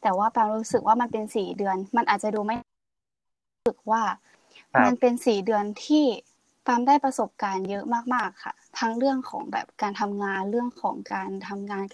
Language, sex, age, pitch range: Thai, female, 20-39, 200-245 Hz